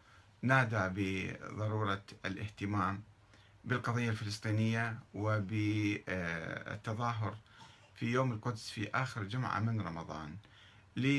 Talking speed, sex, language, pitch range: 75 wpm, male, Arabic, 100-130 Hz